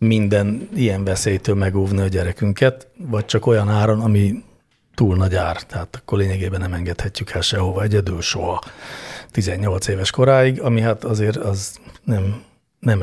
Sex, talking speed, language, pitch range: male, 145 wpm, Hungarian, 100-125 Hz